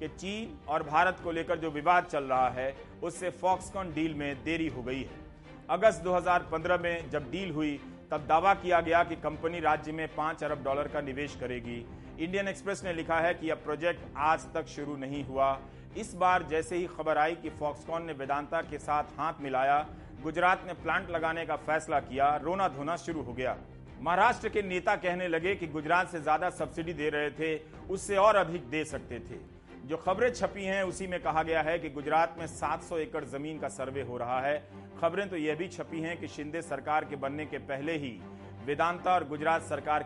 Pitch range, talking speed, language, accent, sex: 145-175 Hz, 145 wpm, Hindi, native, male